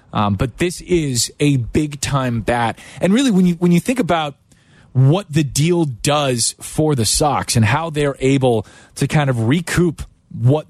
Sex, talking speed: male, 180 wpm